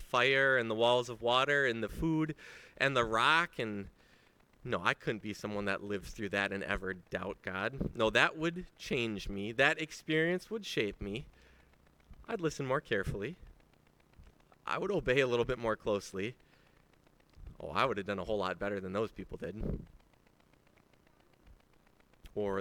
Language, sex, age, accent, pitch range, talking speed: English, male, 30-49, American, 100-160 Hz, 165 wpm